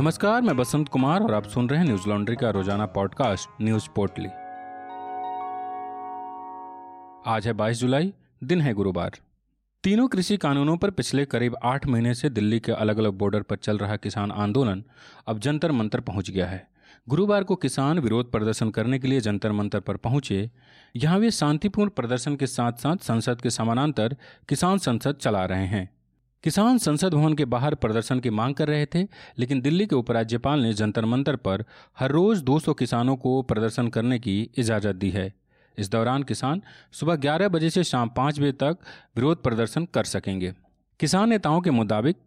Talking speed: 175 wpm